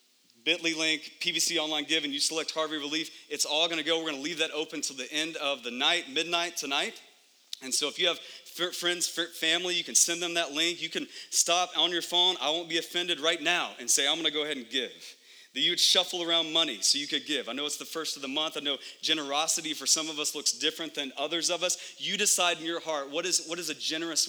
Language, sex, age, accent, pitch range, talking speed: English, male, 30-49, American, 145-175 Hz, 265 wpm